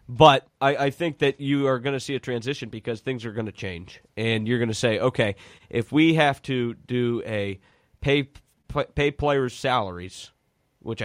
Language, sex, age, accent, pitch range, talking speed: English, male, 30-49, American, 110-140 Hz, 190 wpm